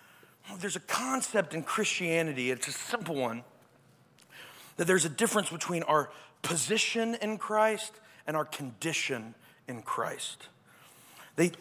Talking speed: 125 wpm